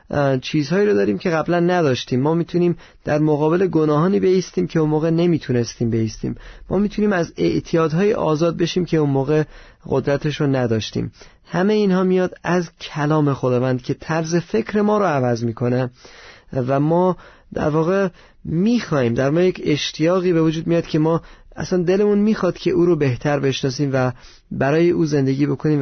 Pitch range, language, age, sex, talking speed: 135-170 Hz, Persian, 30-49, male, 160 wpm